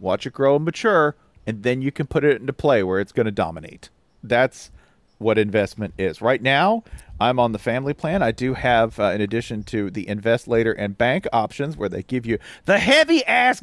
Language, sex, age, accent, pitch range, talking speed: English, male, 40-59, American, 95-145 Hz, 210 wpm